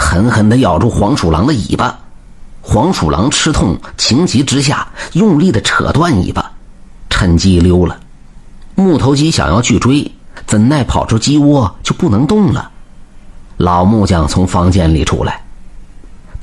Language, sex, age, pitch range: Chinese, male, 50-69, 85-115 Hz